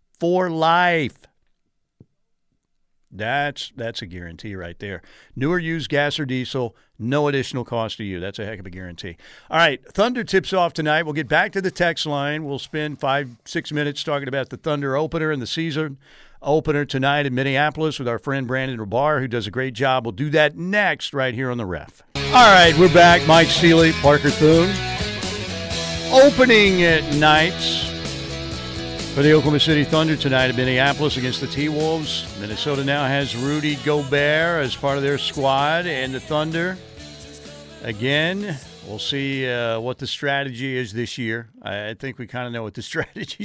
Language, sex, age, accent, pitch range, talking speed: English, male, 50-69, American, 125-160 Hz, 175 wpm